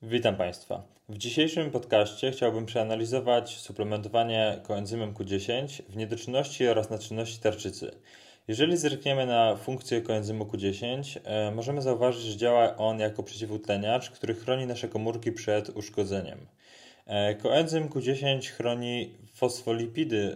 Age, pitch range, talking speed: 20-39, 105-125 Hz, 110 wpm